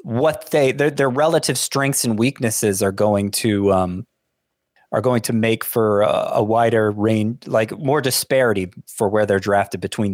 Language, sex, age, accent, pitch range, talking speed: English, male, 20-39, American, 105-140 Hz, 170 wpm